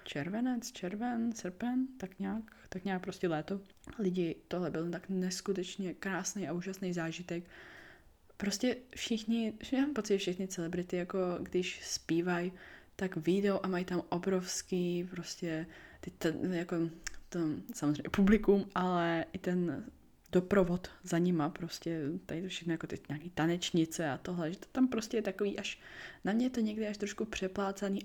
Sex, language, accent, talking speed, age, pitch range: female, Czech, native, 150 wpm, 20-39, 175-210 Hz